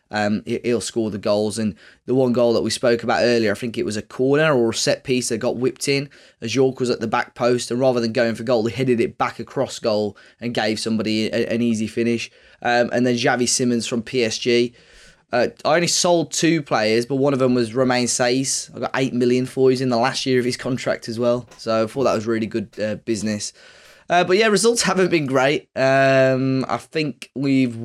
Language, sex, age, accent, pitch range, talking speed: English, male, 20-39, British, 115-135 Hz, 235 wpm